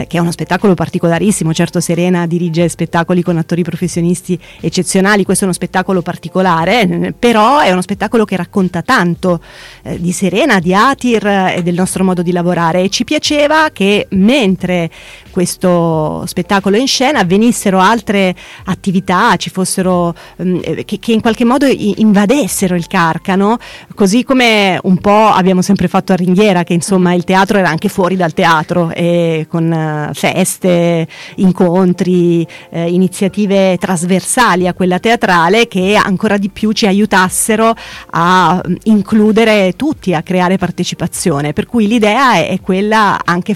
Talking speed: 145 wpm